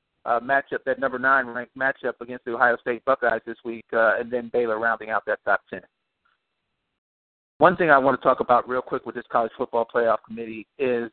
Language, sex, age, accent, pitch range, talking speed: English, male, 50-69, American, 115-140 Hz, 210 wpm